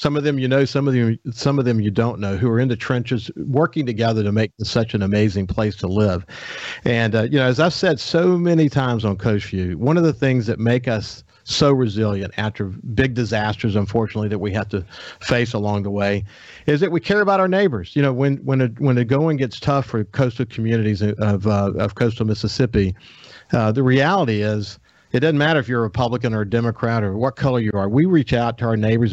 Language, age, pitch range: English, 50-69, 105-135 Hz